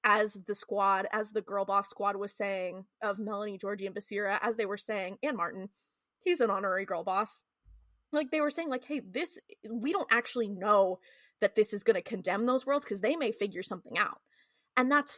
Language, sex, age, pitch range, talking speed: English, female, 20-39, 205-260 Hz, 210 wpm